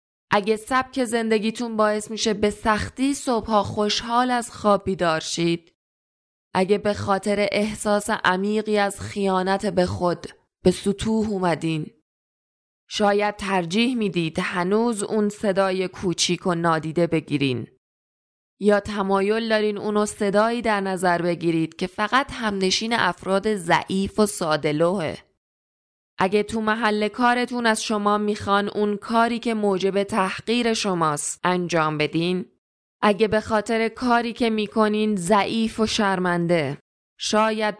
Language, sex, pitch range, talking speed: Persian, female, 175-215 Hz, 120 wpm